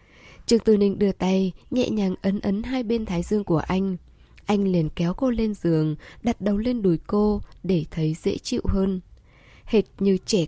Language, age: Vietnamese, 10-29